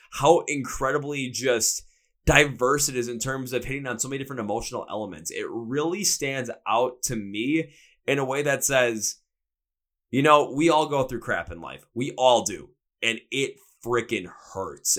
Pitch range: 120-140 Hz